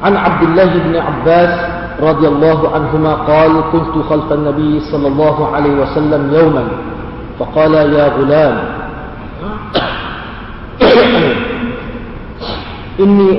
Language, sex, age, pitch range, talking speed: Malay, male, 40-59, 145-170 Hz, 95 wpm